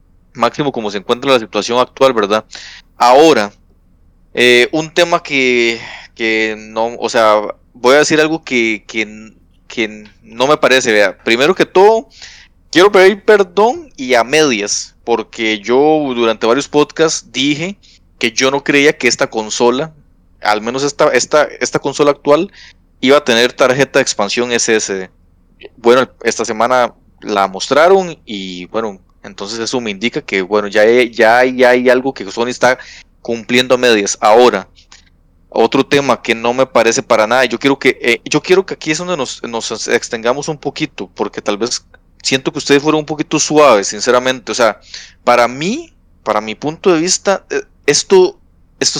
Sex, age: male, 30-49